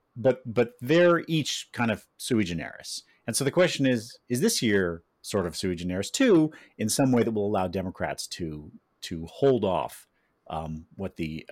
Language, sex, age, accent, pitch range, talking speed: English, male, 40-59, American, 95-130 Hz, 180 wpm